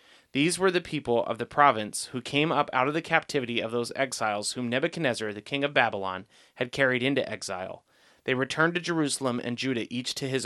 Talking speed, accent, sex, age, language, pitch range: 205 wpm, American, male, 30-49, English, 120-150 Hz